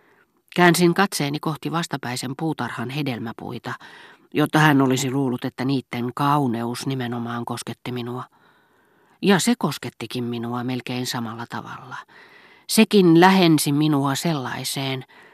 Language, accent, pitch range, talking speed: Finnish, native, 125-160 Hz, 105 wpm